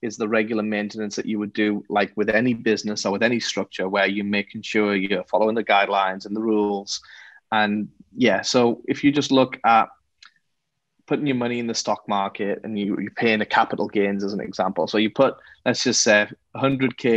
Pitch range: 105-130 Hz